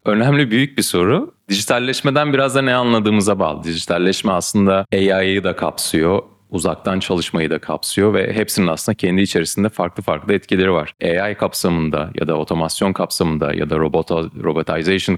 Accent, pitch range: native, 85-100 Hz